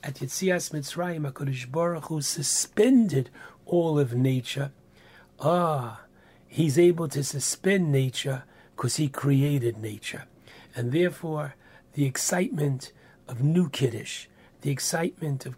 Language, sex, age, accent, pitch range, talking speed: English, male, 60-79, American, 130-155 Hz, 115 wpm